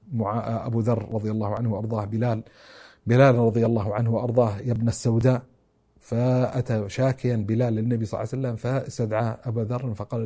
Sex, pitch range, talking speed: male, 120-160 Hz, 165 wpm